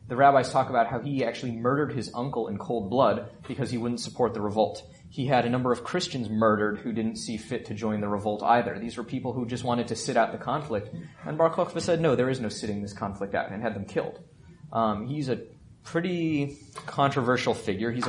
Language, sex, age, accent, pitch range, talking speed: English, male, 20-39, American, 105-125 Hz, 230 wpm